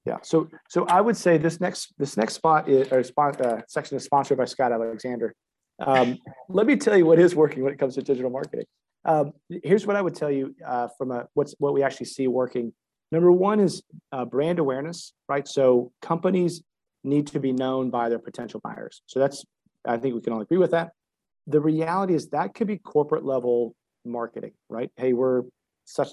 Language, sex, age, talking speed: English, male, 40-59, 210 wpm